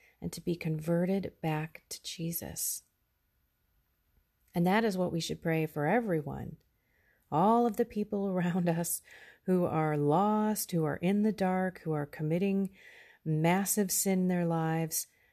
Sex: female